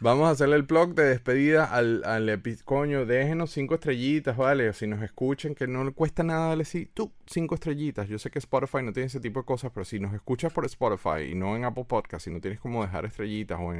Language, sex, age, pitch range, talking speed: Spanish, male, 30-49, 95-130 Hz, 245 wpm